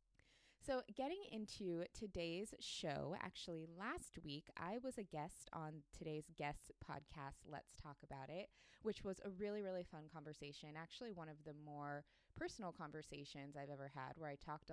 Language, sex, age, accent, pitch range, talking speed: English, female, 20-39, American, 145-185 Hz, 165 wpm